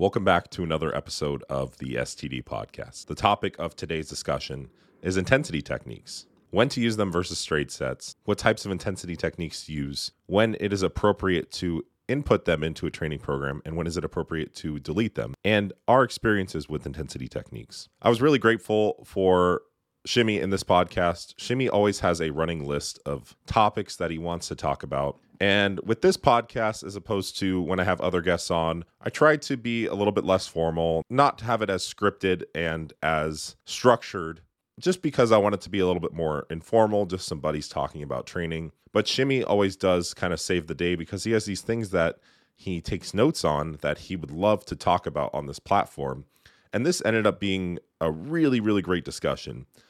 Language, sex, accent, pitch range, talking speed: English, male, American, 80-105 Hz, 200 wpm